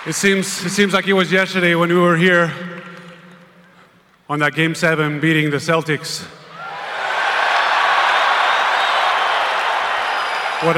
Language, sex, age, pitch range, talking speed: English, male, 20-39, 150-170 Hz, 110 wpm